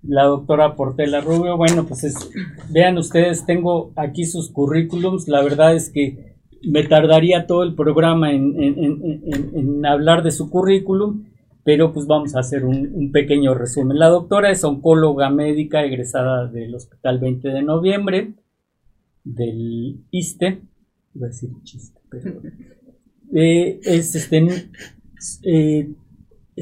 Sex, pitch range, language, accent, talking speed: male, 130-165 Hz, Spanish, Mexican, 140 wpm